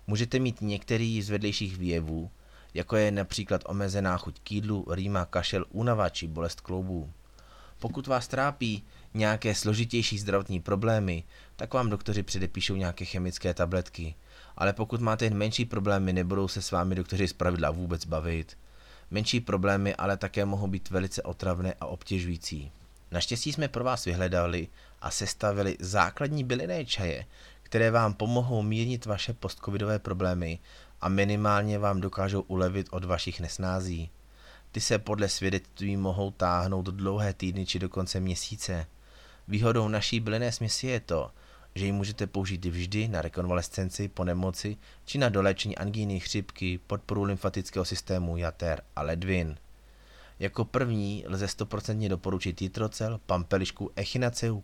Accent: native